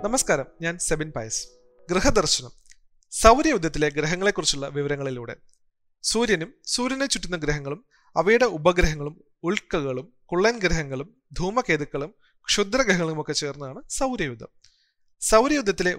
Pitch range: 150-195 Hz